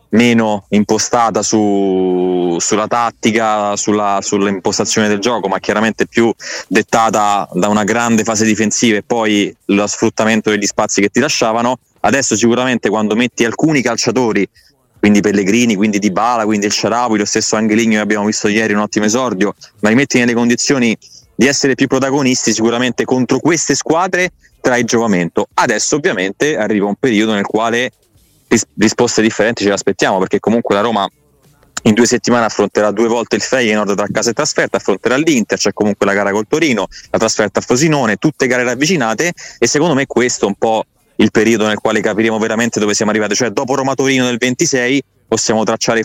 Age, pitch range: 20-39, 105-125 Hz